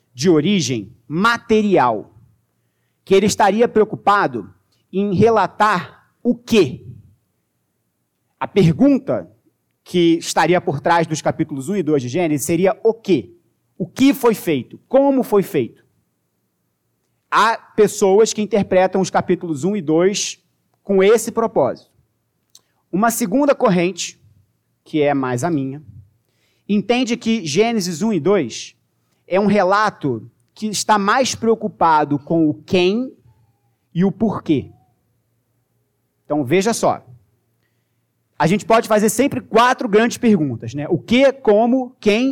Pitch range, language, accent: 140-220 Hz, Portuguese, Brazilian